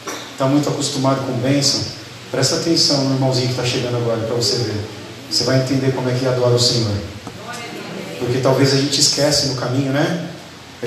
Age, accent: 40-59, Brazilian